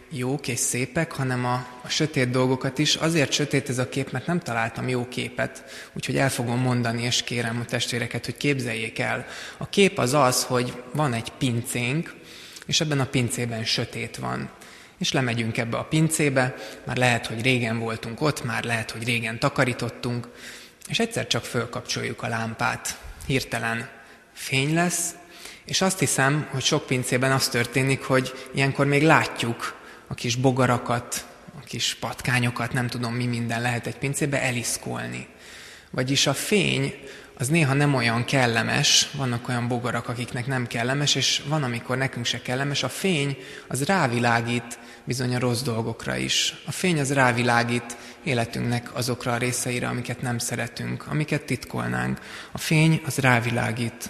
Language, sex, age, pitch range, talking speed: Hungarian, male, 20-39, 120-140 Hz, 155 wpm